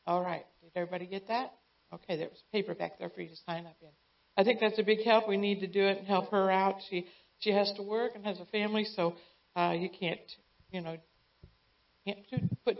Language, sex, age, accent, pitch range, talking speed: English, female, 60-79, American, 175-205 Hz, 230 wpm